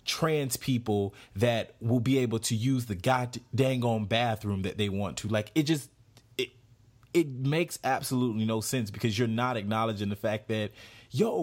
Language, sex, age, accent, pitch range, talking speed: English, male, 30-49, American, 115-145 Hz, 175 wpm